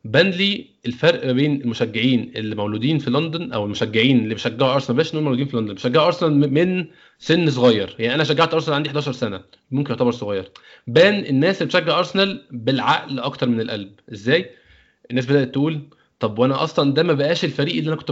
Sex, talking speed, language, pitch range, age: male, 190 wpm, Arabic, 125-165 Hz, 20-39